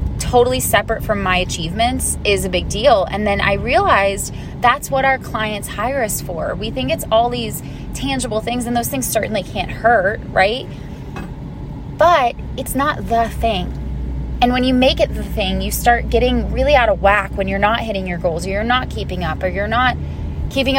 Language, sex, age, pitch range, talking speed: English, female, 20-39, 185-255 Hz, 195 wpm